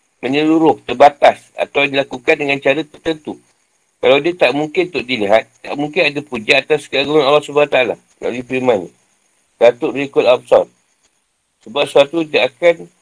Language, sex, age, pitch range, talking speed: Malay, male, 50-69, 130-155 Hz, 145 wpm